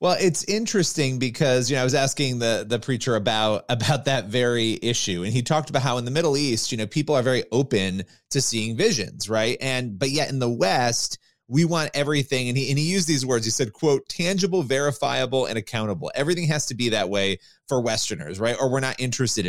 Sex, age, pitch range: male, 30-49, 115-145 Hz